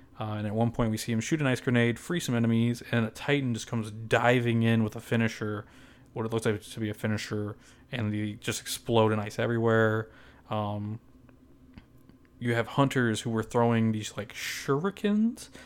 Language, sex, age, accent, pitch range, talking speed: English, male, 20-39, American, 110-130 Hz, 190 wpm